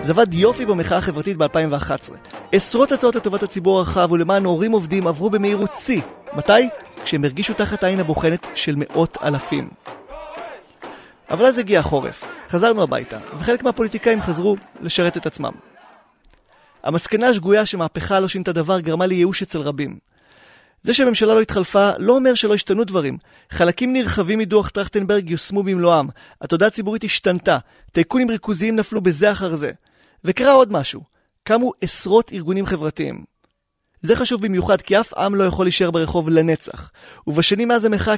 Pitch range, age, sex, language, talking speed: 170-215 Hz, 30-49, male, Hebrew, 135 wpm